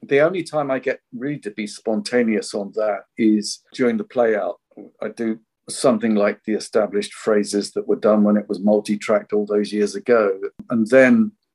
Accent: British